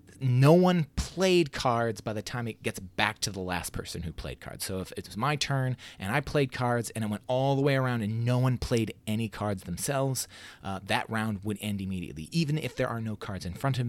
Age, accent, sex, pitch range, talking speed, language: 30-49, American, male, 95-125 Hz, 240 wpm, English